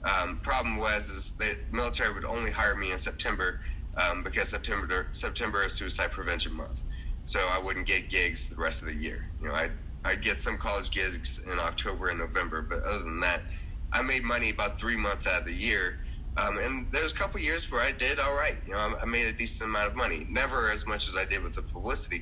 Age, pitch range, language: 30-49, 75-105 Hz, English